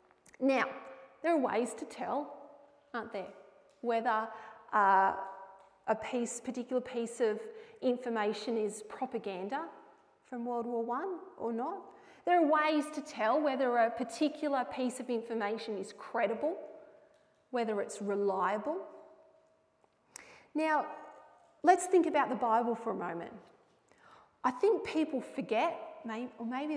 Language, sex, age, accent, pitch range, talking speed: English, female, 30-49, Australian, 225-295 Hz, 125 wpm